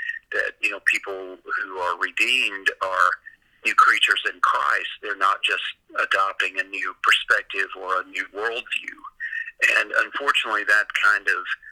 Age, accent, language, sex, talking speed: 50-69, American, English, male, 145 wpm